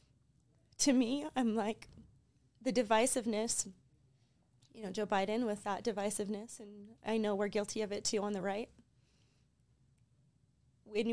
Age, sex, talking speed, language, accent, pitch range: 20-39, female, 135 wpm, English, American, 195-230 Hz